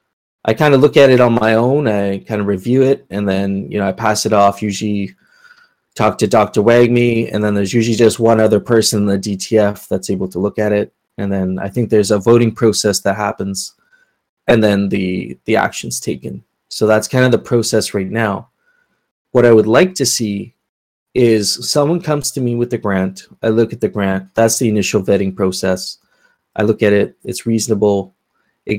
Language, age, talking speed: English, 20-39, 205 wpm